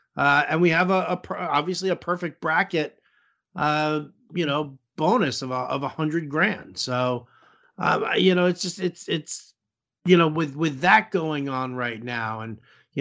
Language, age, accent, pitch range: English, 50-69, American, 140-180 Hz